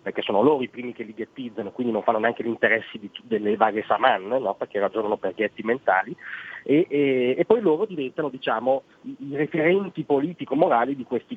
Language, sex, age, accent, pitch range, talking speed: Italian, male, 40-59, native, 120-155 Hz, 195 wpm